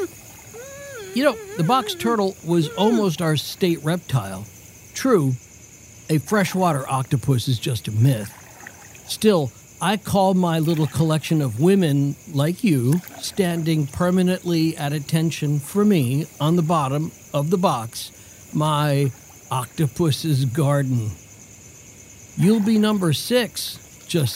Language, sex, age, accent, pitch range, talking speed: English, male, 60-79, American, 125-185 Hz, 120 wpm